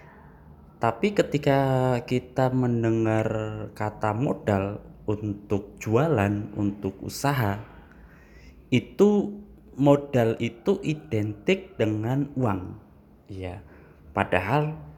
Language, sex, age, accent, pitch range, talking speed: Indonesian, male, 20-39, native, 100-130 Hz, 70 wpm